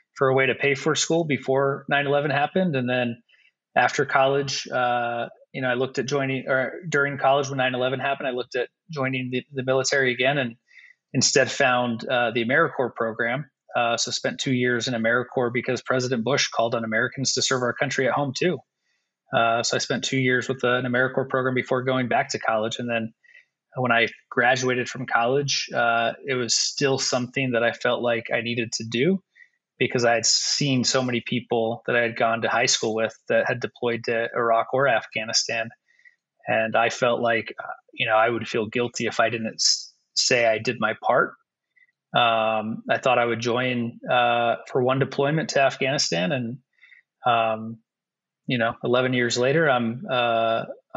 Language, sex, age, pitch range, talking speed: English, male, 20-39, 115-135 Hz, 185 wpm